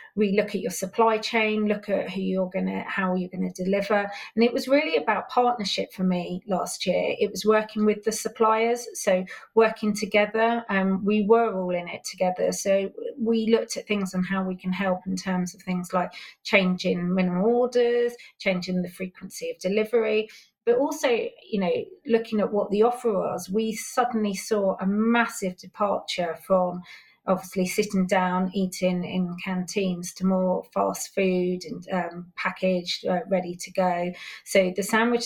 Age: 30-49